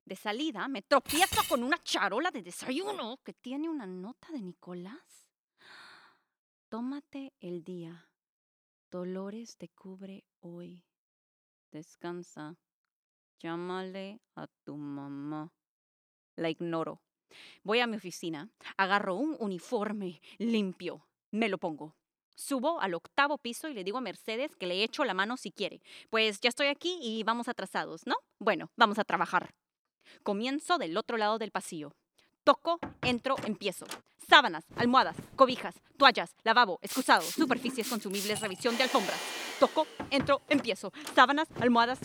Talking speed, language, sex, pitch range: 135 wpm, English, female, 195-295 Hz